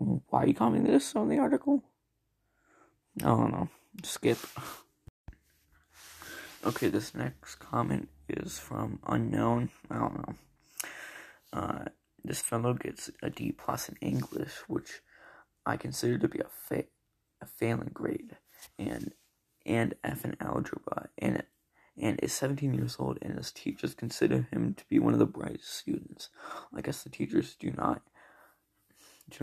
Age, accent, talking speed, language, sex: 20-39, American, 145 wpm, English, male